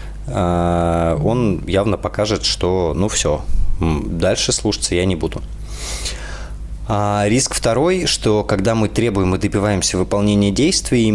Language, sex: Russian, male